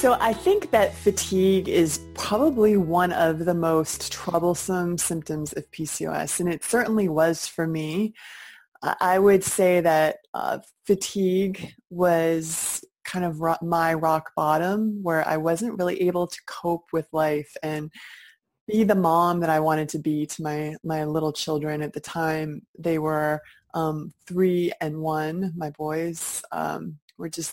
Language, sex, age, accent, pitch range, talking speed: English, female, 20-39, American, 155-185 Hz, 155 wpm